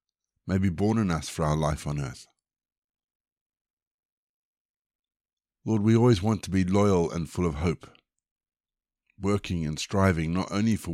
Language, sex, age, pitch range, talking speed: English, male, 50-69, 85-110 Hz, 150 wpm